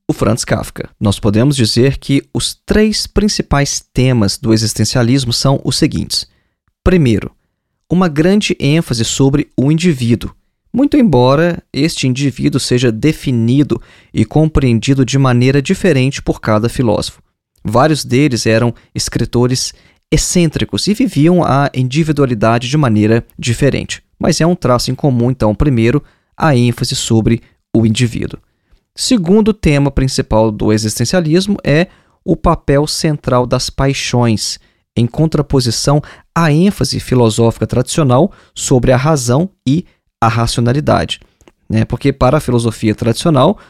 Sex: male